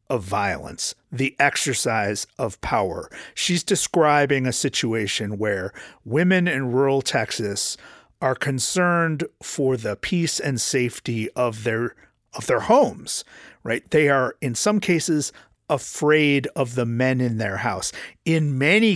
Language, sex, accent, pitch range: English, male, American, 120-155 Hz